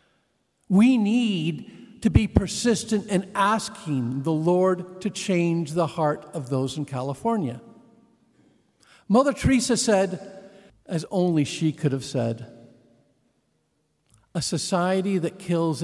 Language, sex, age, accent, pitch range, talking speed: English, male, 50-69, American, 175-260 Hz, 115 wpm